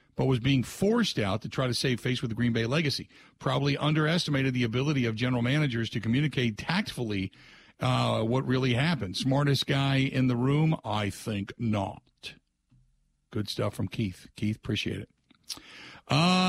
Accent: American